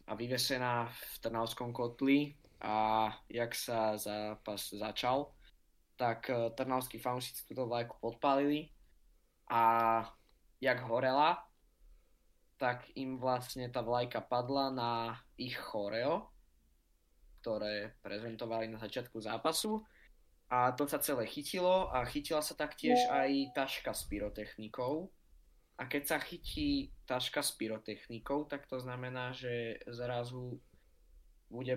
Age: 20-39